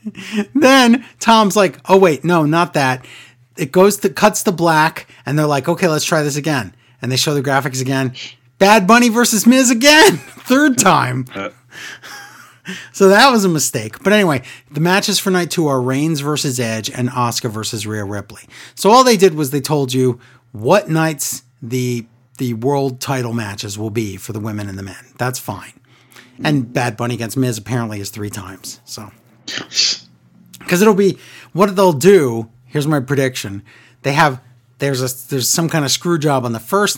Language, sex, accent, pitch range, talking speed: English, male, American, 120-170 Hz, 185 wpm